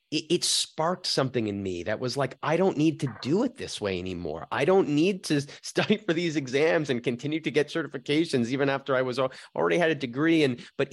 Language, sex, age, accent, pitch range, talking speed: English, male, 30-49, American, 110-145 Hz, 225 wpm